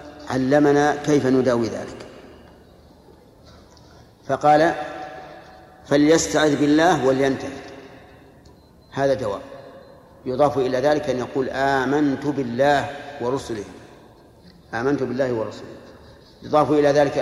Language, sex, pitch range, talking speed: Arabic, male, 125-145 Hz, 85 wpm